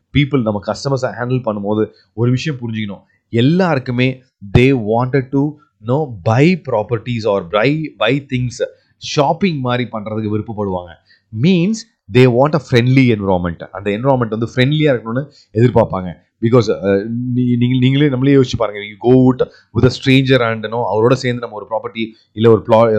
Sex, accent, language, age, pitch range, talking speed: male, native, Tamil, 30-49, 110-130 Hz, 150 wpm